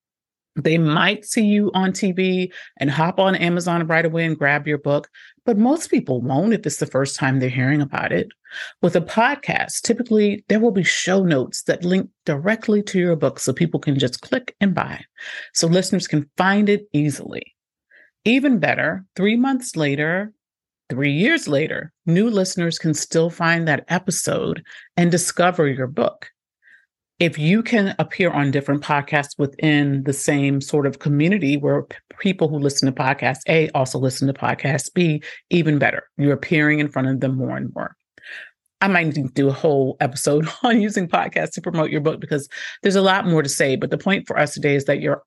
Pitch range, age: 140-185 Hz, 40-59